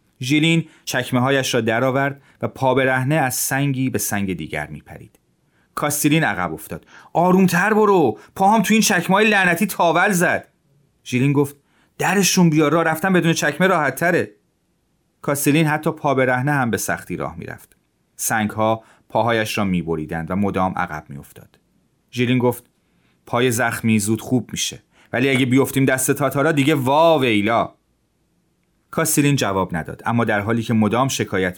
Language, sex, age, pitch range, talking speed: Persian, male, 30-49, 110-155 Hz, 150 wpm